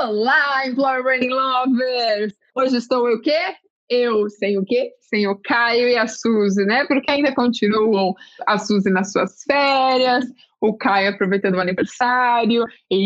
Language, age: Portuguese, 20-39